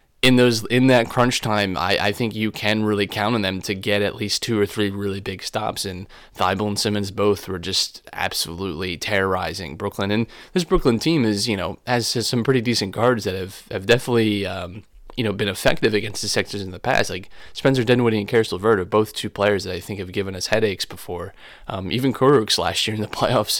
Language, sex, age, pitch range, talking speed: English, male, 20-39, 95-110 Hz, 225 wpm